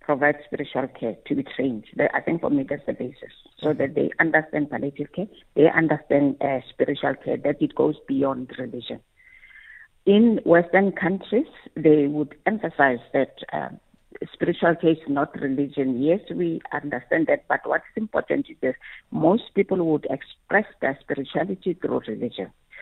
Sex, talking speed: female, 155 wpm